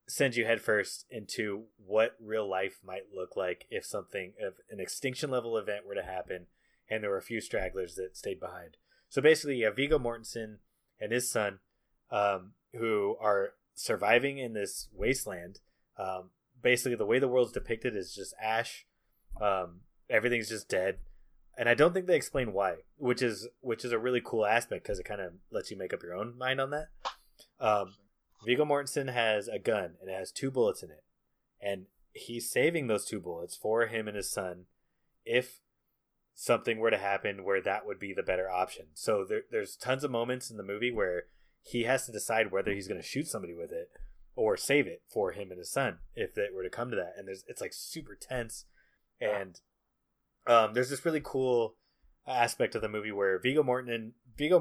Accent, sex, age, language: American, male, 20-39, English